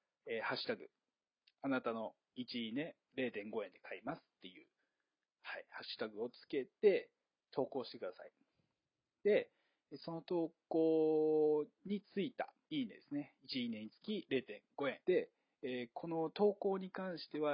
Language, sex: Japanese, male